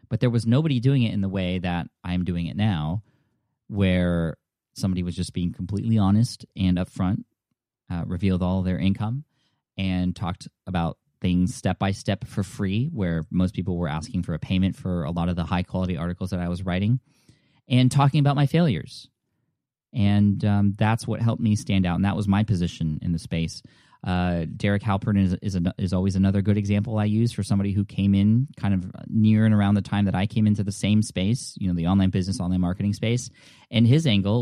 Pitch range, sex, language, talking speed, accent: 90-110 Hz, male, English, 215 wpm, American